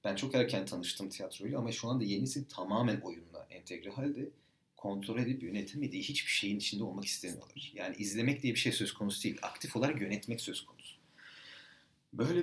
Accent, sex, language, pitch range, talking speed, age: native, male, Turkish, 95-125 Hz, 170 wpm, 40-59